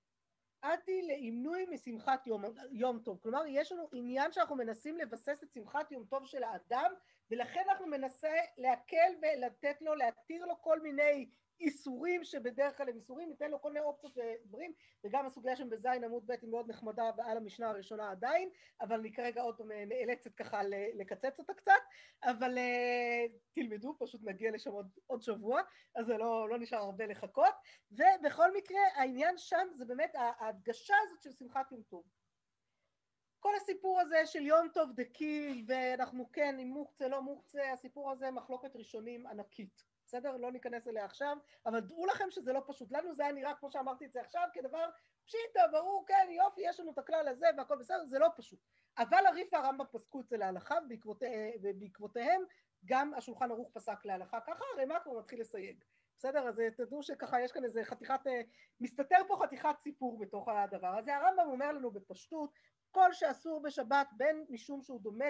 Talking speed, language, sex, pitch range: 175 wpm, Hebrew, female, 235-315 Hz